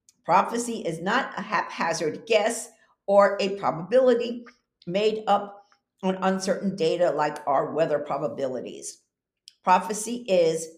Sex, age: female, 50-69